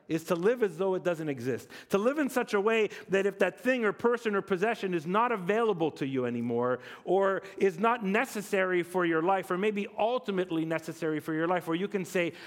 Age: 40-59